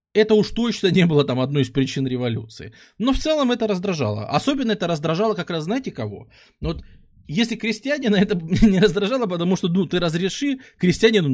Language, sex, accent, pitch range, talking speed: Russian, male, native, 130-200 Hz, 180 wpm